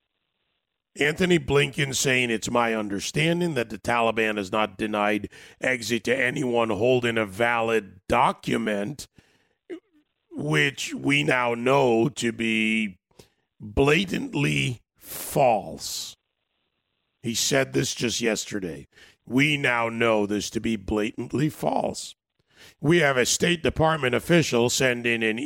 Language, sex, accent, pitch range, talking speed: English, male, American, 110-135 Hz, 115 wpm